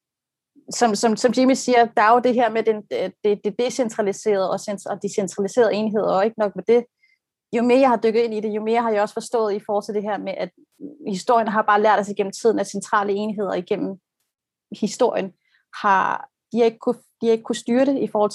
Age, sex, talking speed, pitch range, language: 30-49, female, 220 wpm, 200-230 Hz, Danish